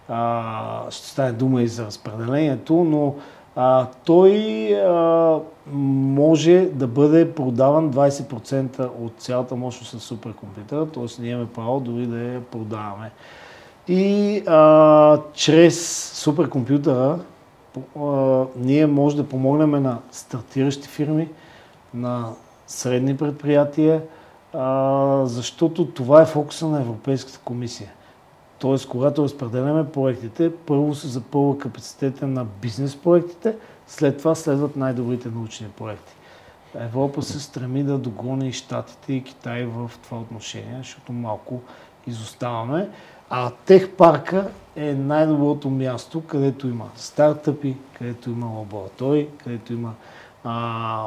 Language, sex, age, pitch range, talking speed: Bulgarian, male, 40-59, 120-150 Hz, 115 wpm